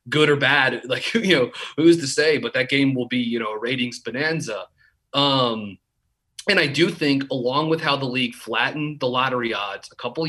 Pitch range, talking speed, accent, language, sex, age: 120-145 Hz, 205 wpm, American, English, male, 30-49